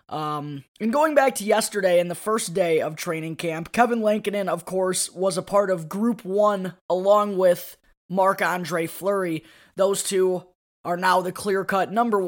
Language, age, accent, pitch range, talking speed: English, 20-39, American, 170-205 Hz, 170 wpm